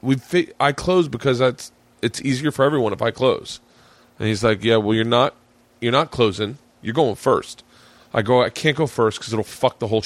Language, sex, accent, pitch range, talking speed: English, male, American, 115-145 Hz, 215 wpm